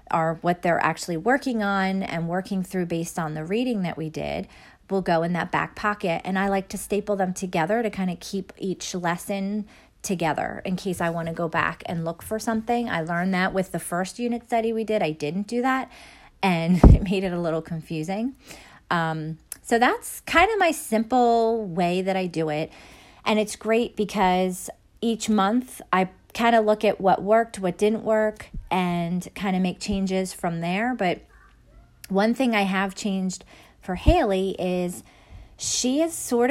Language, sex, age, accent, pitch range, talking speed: English, female, 40-59, American, 175-215 Hz, 190 wpm